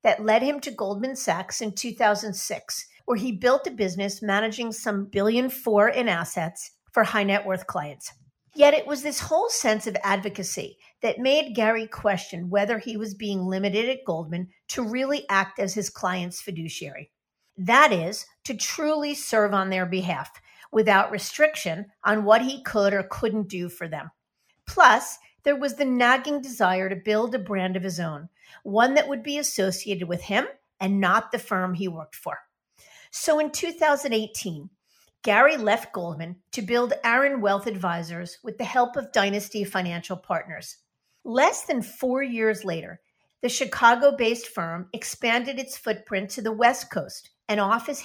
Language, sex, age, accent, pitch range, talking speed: English, female, 50-69, American, 190-245 Hz, 165 wpm